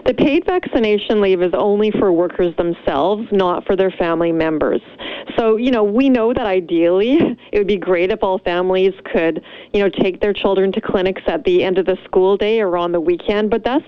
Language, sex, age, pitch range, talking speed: English, female, 30-49, 180-220 Hz, 210 wpm